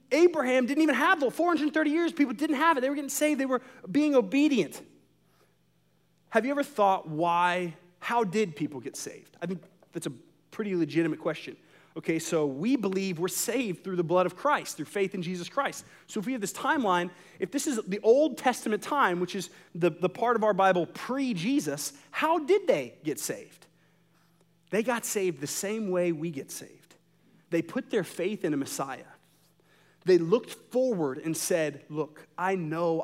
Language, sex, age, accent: English, male, 30-49, American